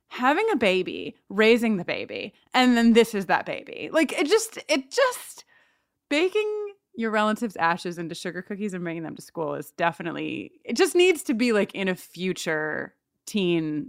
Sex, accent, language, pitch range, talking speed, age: female, American, English, 205-335 Hz, 175 wpm, 20-39